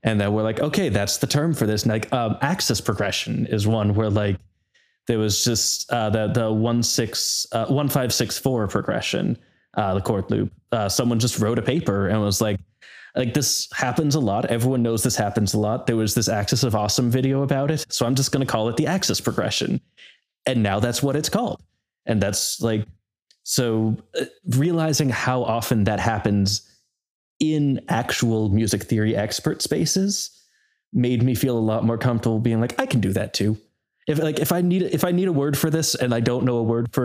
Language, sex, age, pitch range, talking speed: English, male, 20-39, 110-140 Hz, 210 wpm